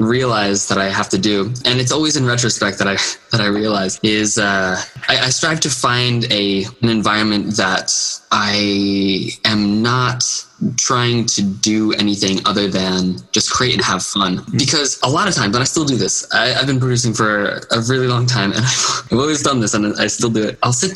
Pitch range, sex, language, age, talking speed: 105-125 Hz, male, English, 20-39, 205 wpm